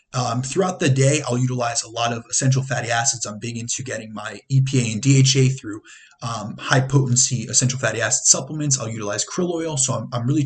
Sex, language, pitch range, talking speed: male, English, 120-140 Hz, 205 wpm